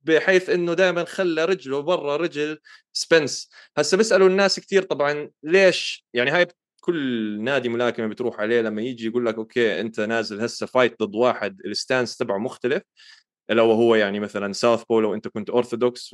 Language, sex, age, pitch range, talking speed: Arabic, male, 20-39, 120-165 Hz, 170 wpm